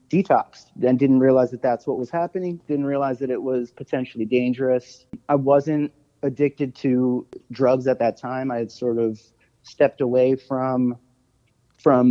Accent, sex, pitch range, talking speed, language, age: American, male, 125-145 Hz, 160 wpm, English, 30-49